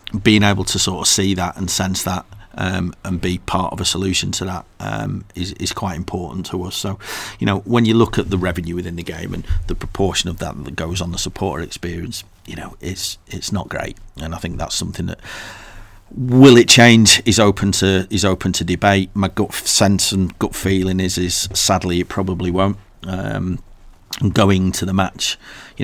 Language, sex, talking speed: English, male, 205 wpm